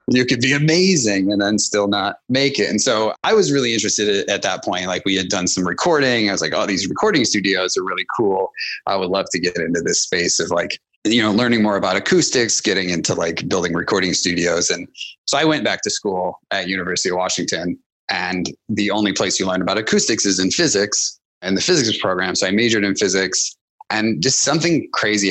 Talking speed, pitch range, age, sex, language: 220 wpm, 95-110 Hz, 30-49, male, English